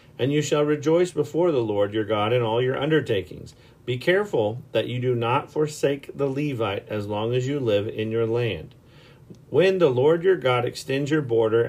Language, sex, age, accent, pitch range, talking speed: English, male, 40-59, American, 115-145 Hz, 195 wpm